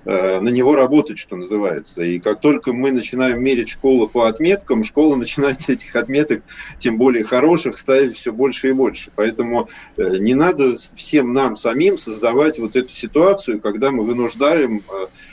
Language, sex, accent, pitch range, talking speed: Russian, male, native, 115-140 Hz, 155 wpm